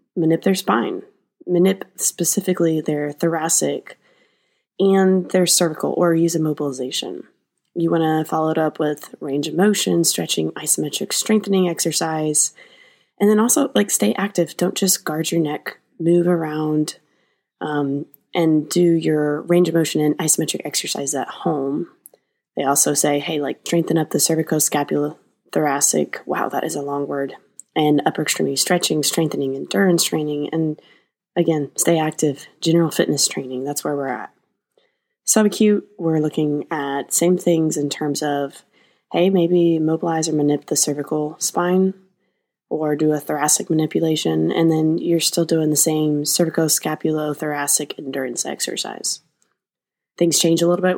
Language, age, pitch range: English, 20-39, 150-175 Hz